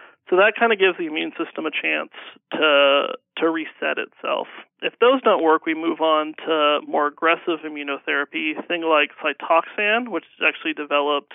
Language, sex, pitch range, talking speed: English, male, 155-195 Hz, 170 wpm